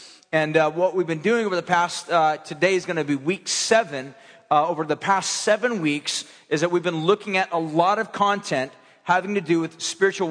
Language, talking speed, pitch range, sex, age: English, 235 wpm, 165-200 Hz, male, 40-59